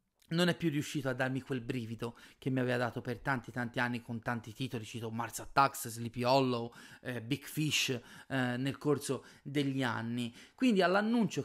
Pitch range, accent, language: 125-165 Hz, native, Italian